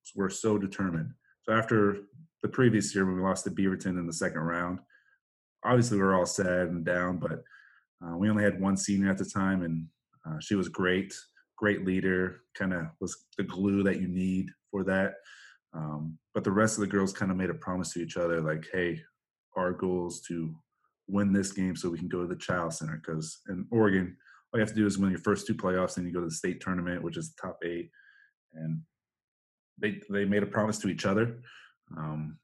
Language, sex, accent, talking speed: English, male, American, 220 wpm